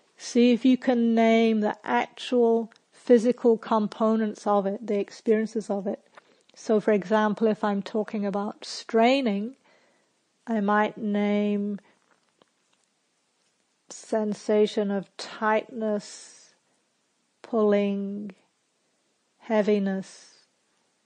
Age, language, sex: 50-69, English, female